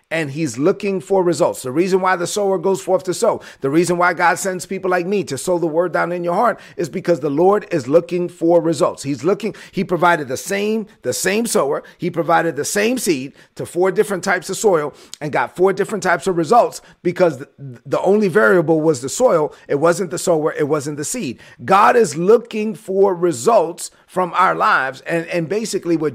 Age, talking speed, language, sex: 40-59, 215 wpm, English, male